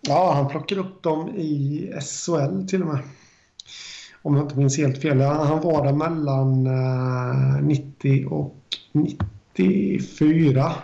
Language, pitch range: Swedish, 135-150 Hz